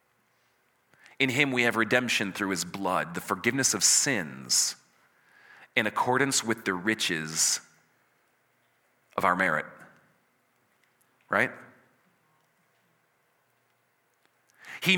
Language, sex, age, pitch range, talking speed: English, male, 40-59, 125-190 Hz, 90 wpm